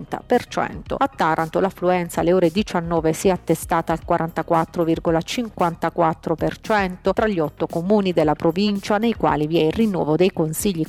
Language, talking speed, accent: Italian, 140 wpm, native